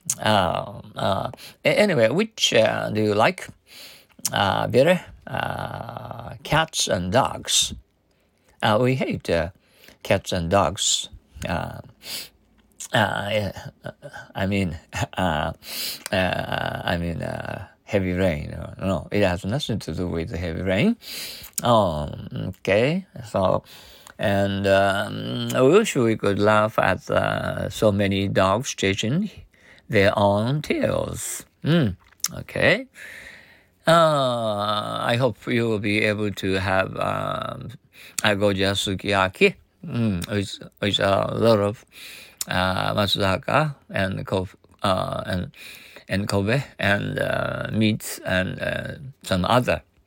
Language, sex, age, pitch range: Japanese, male, 50-69, 95-125 Hz